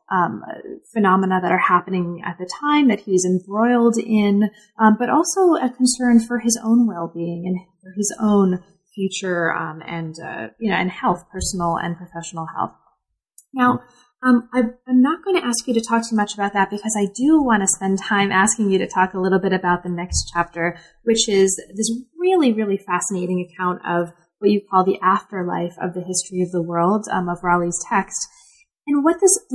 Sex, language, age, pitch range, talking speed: female, English, 20-39, 185-240 Hz, 195 wpm